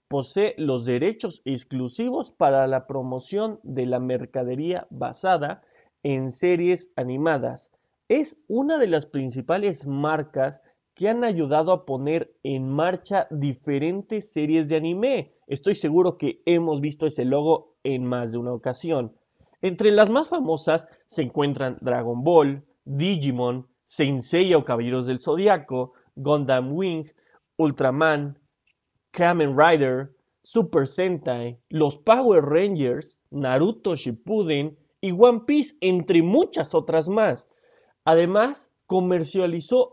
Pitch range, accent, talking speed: 135-200 Hz, Mexican, 115 wpm